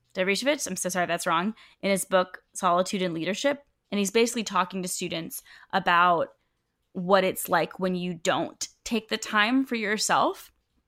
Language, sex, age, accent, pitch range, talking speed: English, female, 20-39, American, 185-240 Hz, 160 wpm